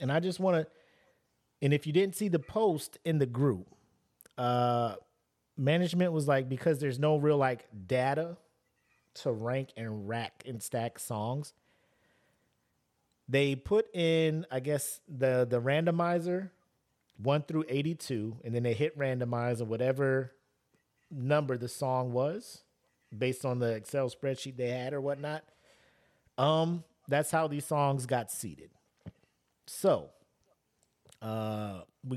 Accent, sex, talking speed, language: American, male, 135 wpm, English